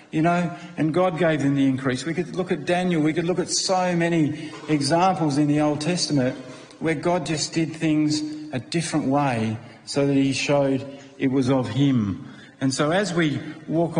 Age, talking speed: 50-69, 195 wpm